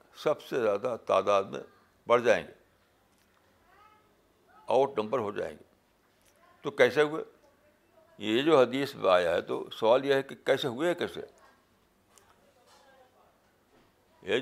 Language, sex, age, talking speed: Urdu, male, 60-79, 130 wpm